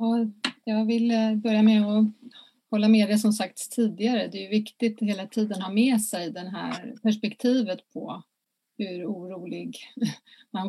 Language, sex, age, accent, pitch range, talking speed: Swedish, female, 30-49, native, 200-240 Hz, 155 wpm